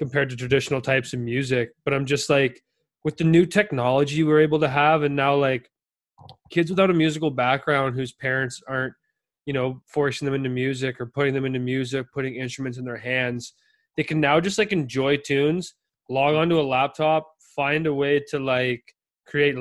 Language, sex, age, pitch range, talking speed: English, male, 20-39, 125-145 Hz, 190 wpm